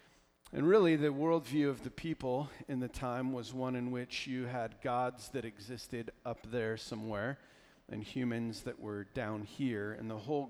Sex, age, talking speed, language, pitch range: male, 40-59, 175 wpm, English, 100-130 Hz